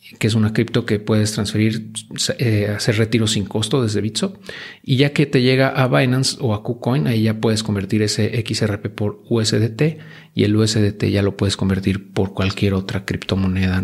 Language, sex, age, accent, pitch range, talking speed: Spanish, male, 40-59, Mexican, 100-120 Hz, 185 wpm